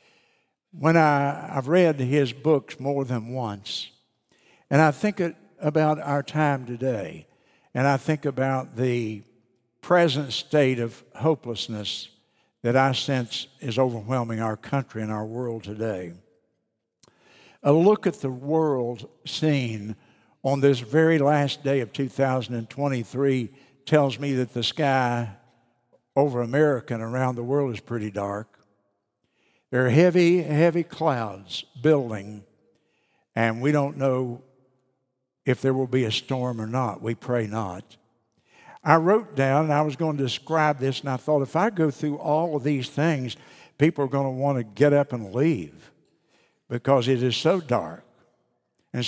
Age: 60-79